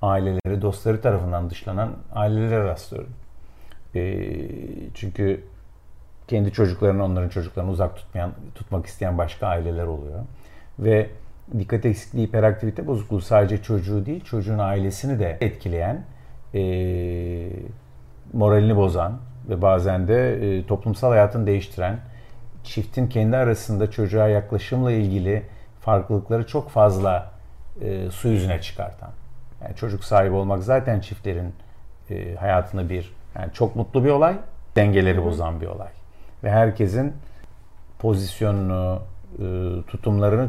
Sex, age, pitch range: male, 50-69, 95-115 Hz